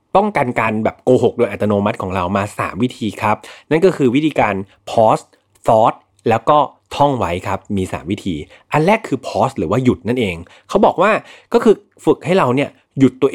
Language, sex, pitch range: Thai, male, 100-140 Hz